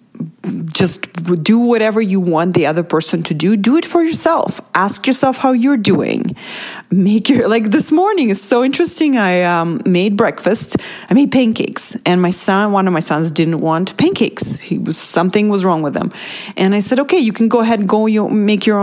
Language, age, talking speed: English, 30-49, 200 wpm